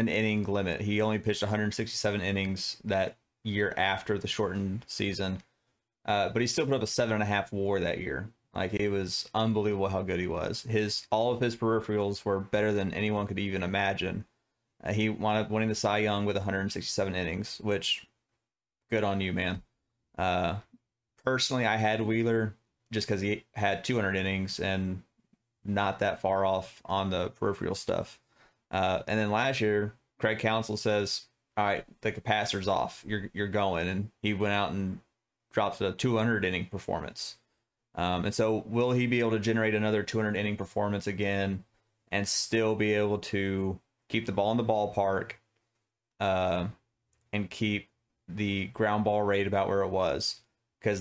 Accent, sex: American, male